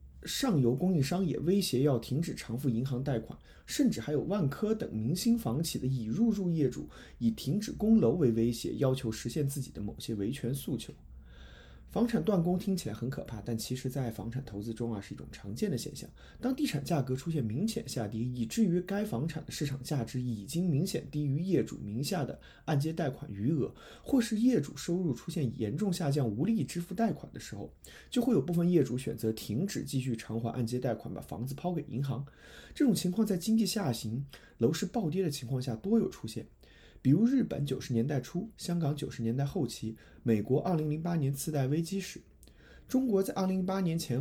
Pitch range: 120-180 Hz